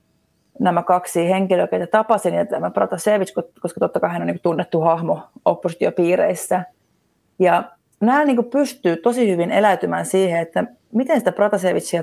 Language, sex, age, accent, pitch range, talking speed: Finnish, female, 30-49, native, 180-215 Hz, 145 wpm